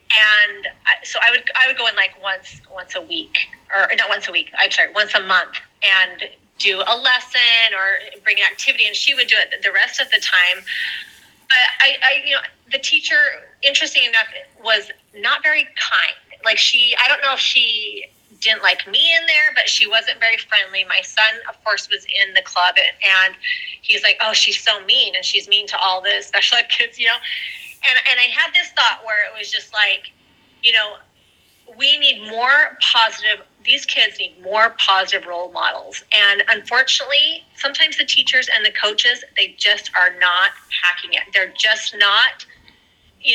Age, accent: 30-49, American